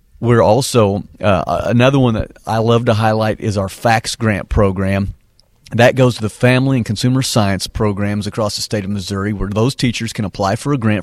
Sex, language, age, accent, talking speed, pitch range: male, English, 40-59, American, 200 wpm, 100-120 Hz